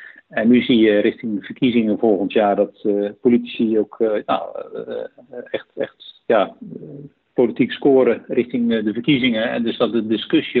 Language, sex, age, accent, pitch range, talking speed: Dutch, male, 50-69, Dutch, 105-150 Hz, 145 wpm